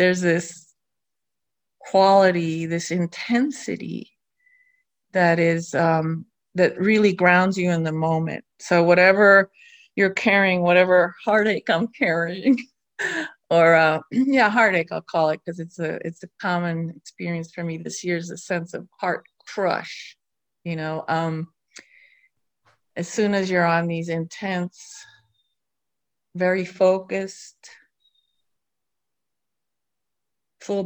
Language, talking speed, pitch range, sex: English, 115 wpm, 165-195 Hz, female